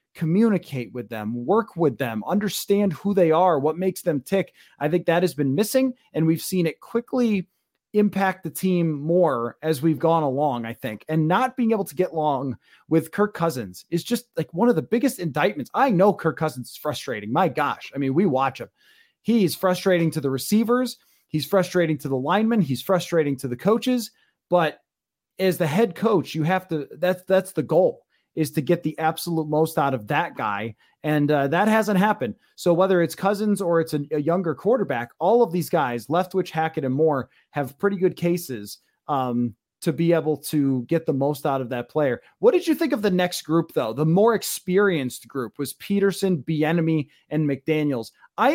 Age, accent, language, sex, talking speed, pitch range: 30-49, American, English, male, 200 wpm, 150-195 Hz